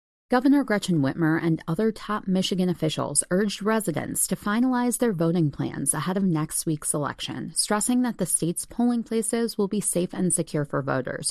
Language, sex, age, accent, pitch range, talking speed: English, female, 30-49, American, 155-210 Hz, 175 wpm